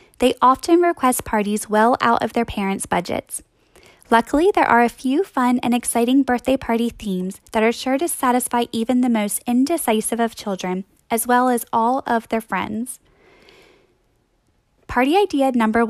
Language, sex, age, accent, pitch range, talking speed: English, female, 10-29, American, 215-265 Hz, 160 wpm